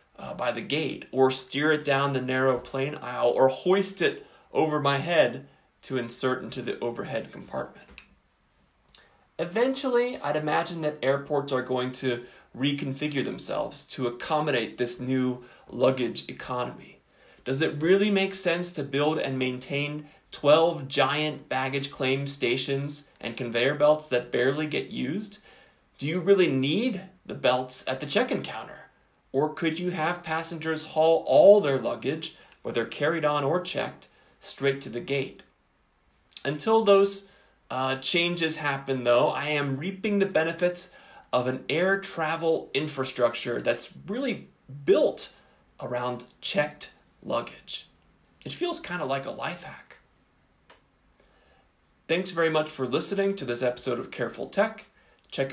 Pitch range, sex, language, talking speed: 130-165 Hz, male, English, 140 wpm